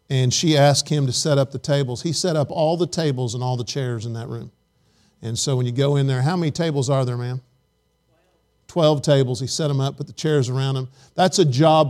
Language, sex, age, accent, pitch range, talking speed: English, male, 50-69, American, 135-170 Hz, 245 wpm